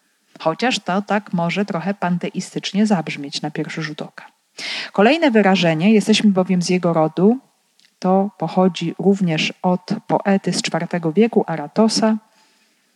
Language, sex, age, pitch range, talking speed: Polish, female, 40-59, 170-210 Hz, 125 wpm